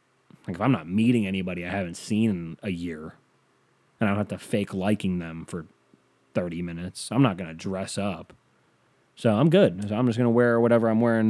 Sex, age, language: male, 20-39, English